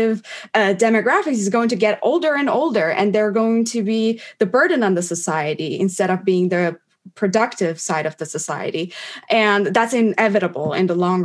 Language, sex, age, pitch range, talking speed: English, female, 20-39, 180-230 Hz, 180 wpm